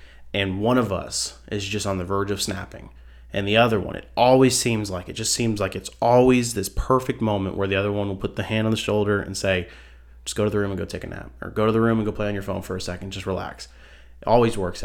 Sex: male